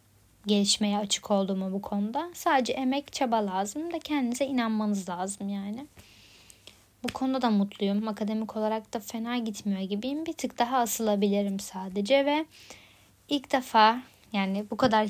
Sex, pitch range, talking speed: female, 200-255 Hz, 140 wpm